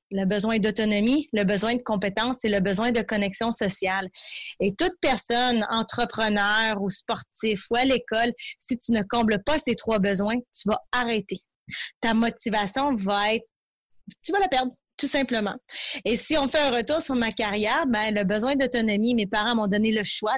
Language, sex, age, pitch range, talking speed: French, female, 30-49, 215-255 Hz, 185 wpm